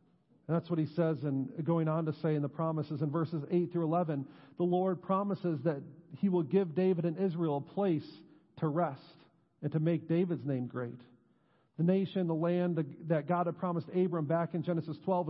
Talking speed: 200 wpm